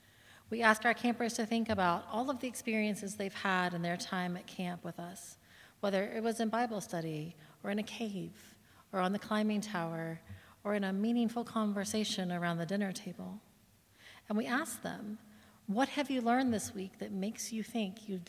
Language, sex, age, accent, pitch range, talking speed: English, female, 40-59, American, 170-220 Hz, 195 wpm